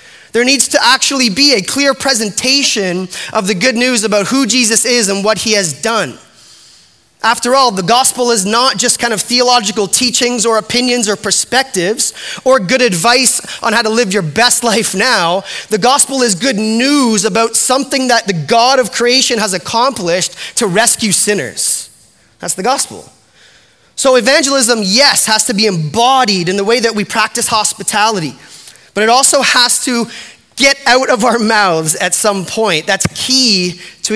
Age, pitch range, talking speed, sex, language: 20-39, 210-255 Hz, 170 wpm, male, English